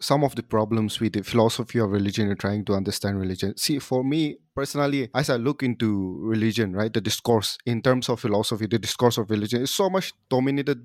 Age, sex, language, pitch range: 30-49, male, English, 105-135 Hz